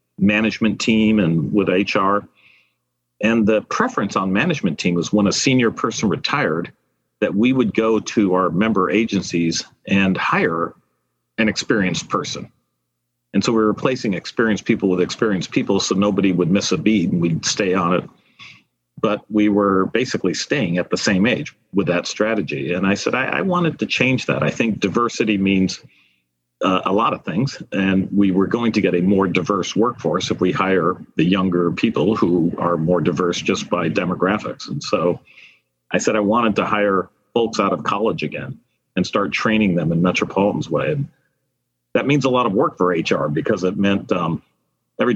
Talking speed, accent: 180 wpm, American